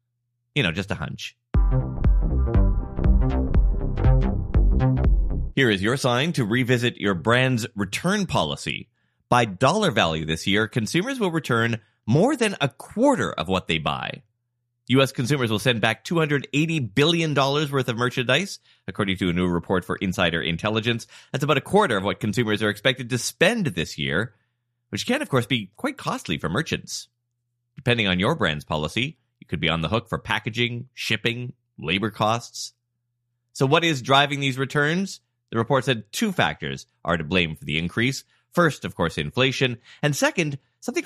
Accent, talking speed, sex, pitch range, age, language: American, 160 wpm, male, 105-135 Hz, 30-49, English